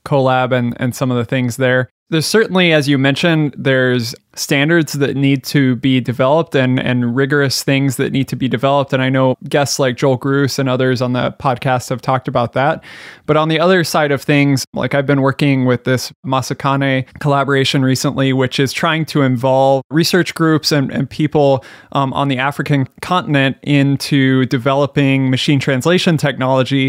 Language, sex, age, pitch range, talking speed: English, male, 20-39, 130-150 Hz, 180 wpm